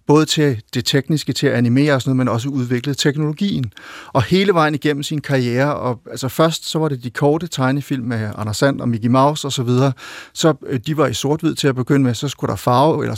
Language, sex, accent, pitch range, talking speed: Danish, male, native, 125-145 Hz, 235 wpm